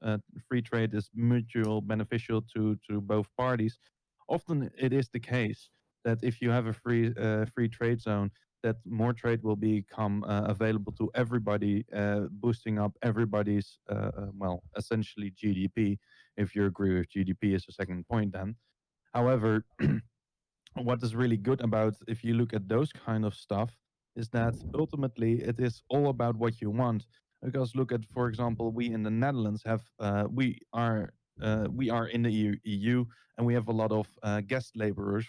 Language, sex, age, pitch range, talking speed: English, male, 20-39, 105-120 Hz, 180 wpm